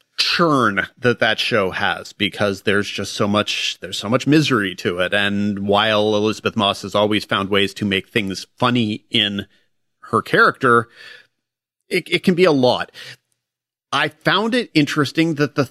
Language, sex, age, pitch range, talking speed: English, male, 30-49, 105-140 Hz, 165 wpm